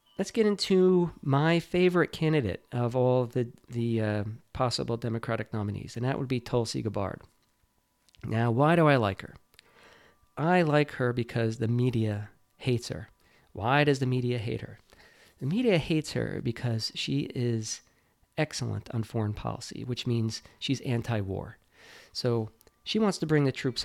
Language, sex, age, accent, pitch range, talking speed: English, male, 40-59, American, 115-140 Hz, 155 wpm